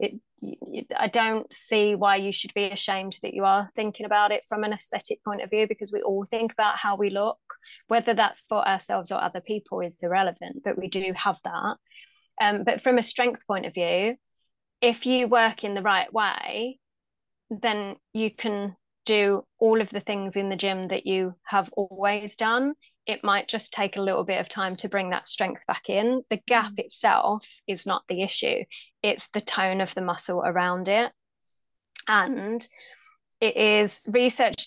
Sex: female